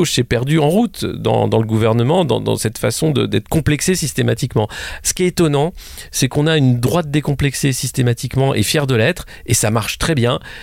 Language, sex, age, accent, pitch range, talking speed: French, male, 40-59, French, 115-155 Hz, 205 wpm